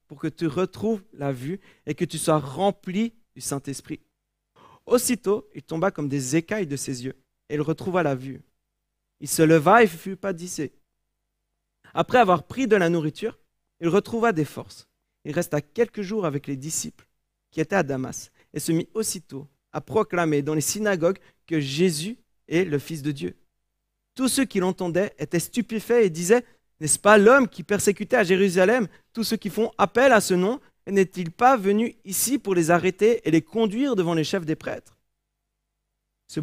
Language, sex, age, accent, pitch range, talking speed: French, male, 40-59, French, 155-210 Hz, 185 wpm